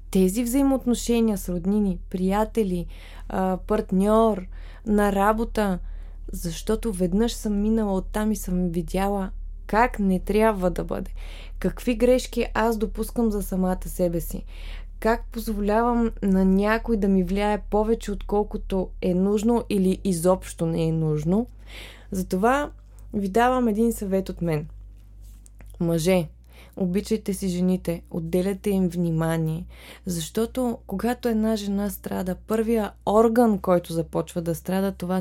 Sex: female